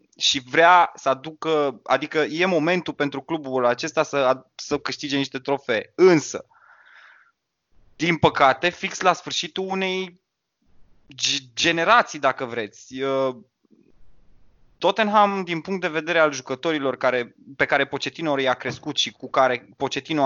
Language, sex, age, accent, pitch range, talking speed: Romanian, male, 20-39, native, 130-165 Hz, 125 wpm